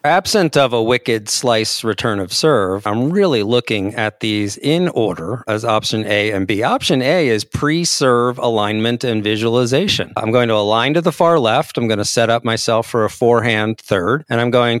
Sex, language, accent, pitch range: male, English, American, 105-130 Hz